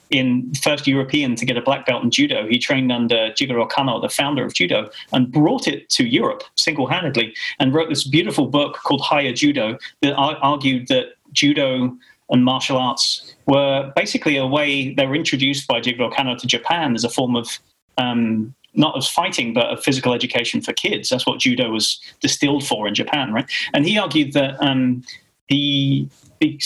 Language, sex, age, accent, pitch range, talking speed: English, male, 30-49, British, 125-150 Hz, 185 wpm